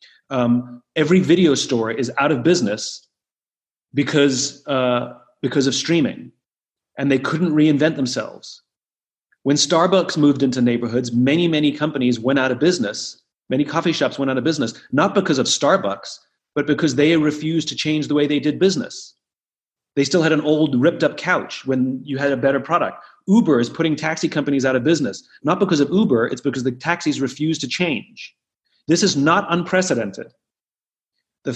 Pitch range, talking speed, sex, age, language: 140-175 Hz, 170 wpm, male, 30-49, English